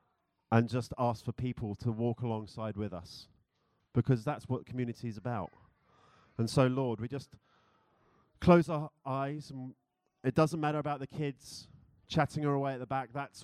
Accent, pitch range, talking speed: British, 110-135 Hz, 160 wpm